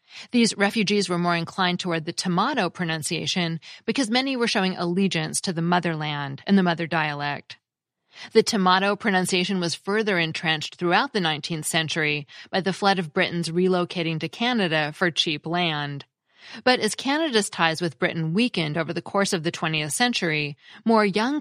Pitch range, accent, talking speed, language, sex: 165-205 Hz, American, 165 wpm, English, female